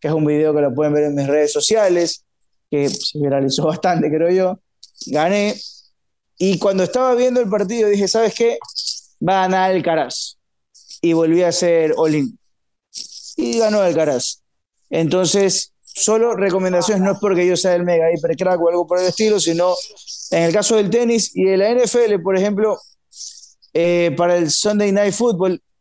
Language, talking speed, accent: Spanish, 180 wpm, Argentinian